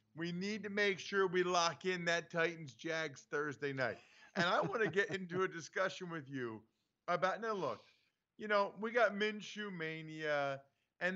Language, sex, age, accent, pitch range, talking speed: English, male, 50-69, American, 145-195 Hz, 175 wpm